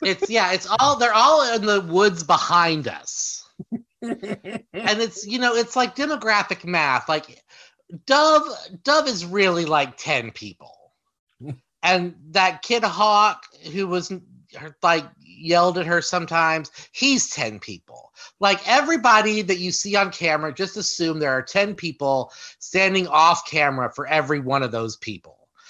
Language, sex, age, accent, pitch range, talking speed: English, male, 30-49, American, 140-210 Hz, 145 wpm